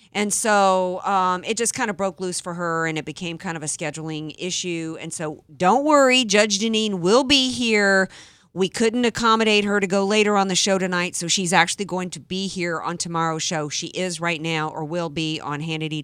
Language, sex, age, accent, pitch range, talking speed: English, female, 40-59, American, 160-215 Hz, 215 wpm